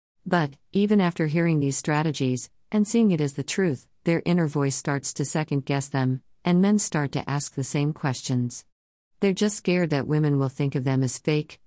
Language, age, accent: English, 50-69, American